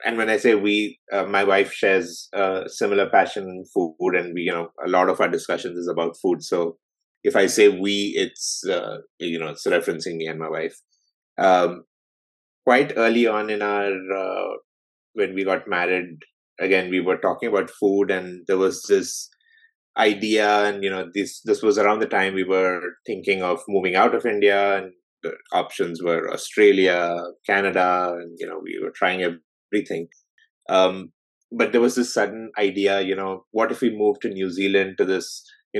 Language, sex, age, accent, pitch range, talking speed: English, male, 20-39, Indian, 95-115 Hz, 190 wpm